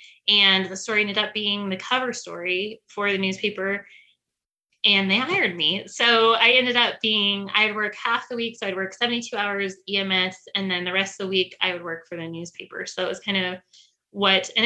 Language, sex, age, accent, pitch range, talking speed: English, female, 20-39, American, 190-245 Hz, 215 wpm